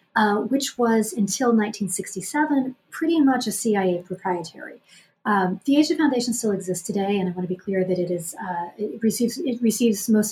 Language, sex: English, female